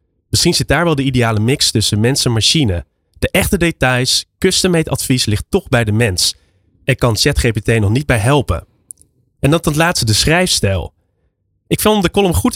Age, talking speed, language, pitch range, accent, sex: 20-39, 185 wpm, Dutch, 100-150 Hz, Dutch, male